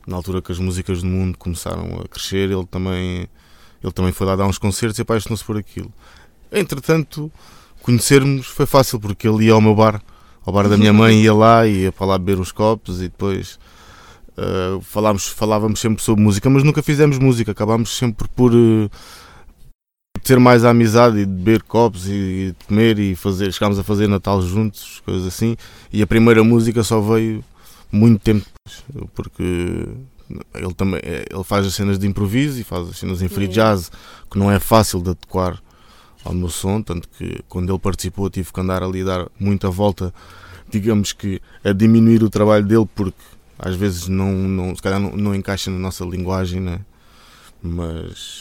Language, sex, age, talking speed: Portuguese, male, 20-39, 185 wpm